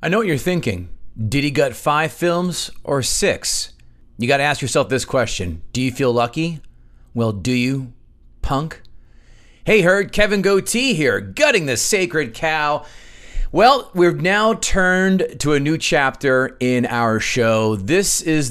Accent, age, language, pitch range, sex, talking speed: American, 30-49, English, 125-180 Hz, male, 160 wpm